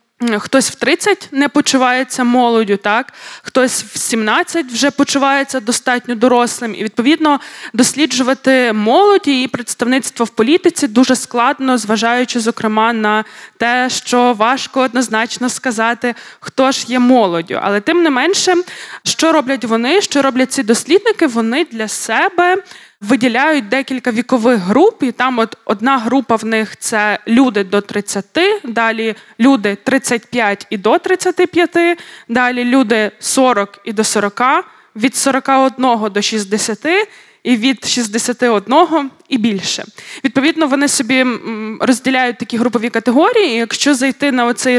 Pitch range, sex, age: 230-275 Hz, female, 20-39